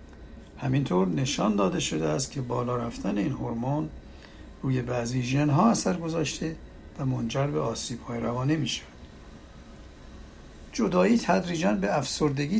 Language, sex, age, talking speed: Persian, male, 60-79, 120 wpm